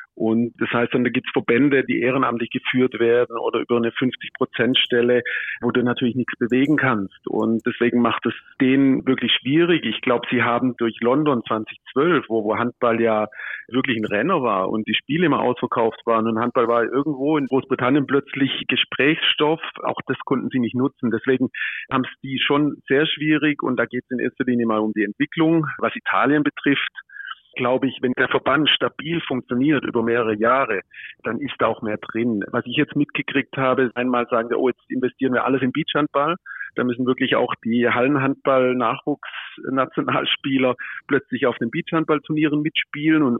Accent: German